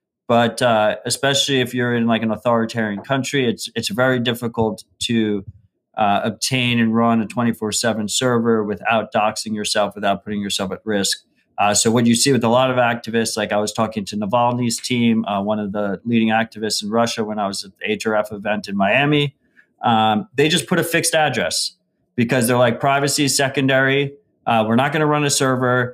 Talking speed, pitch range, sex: 195 wpm, 110-130 Hz, male